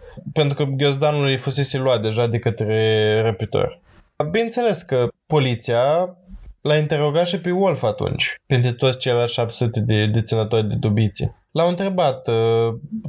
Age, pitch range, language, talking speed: 20-39, 115-165 Hz, Romanian, 140 wpm